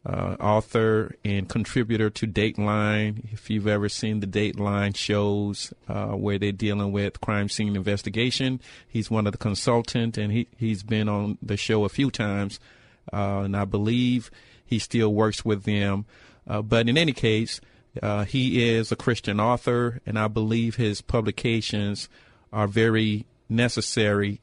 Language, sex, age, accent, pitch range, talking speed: English, male, 40-59, American, 105-120 Hz, 155 wpm